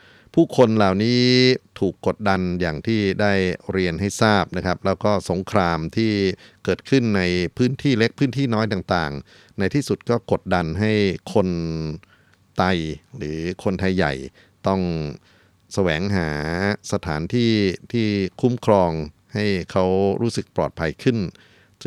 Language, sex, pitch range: Thai, male, 85-105 Hz